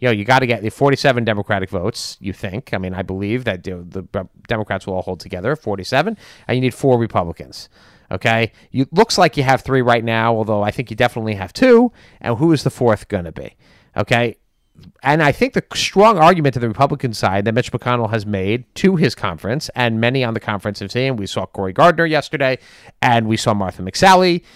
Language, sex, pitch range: English, male, 110-155 Hz